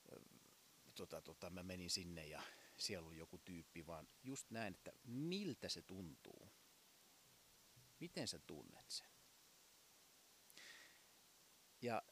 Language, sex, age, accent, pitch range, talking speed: Finnish, male, 30-49, native, 90-120 Hz, 110 wpm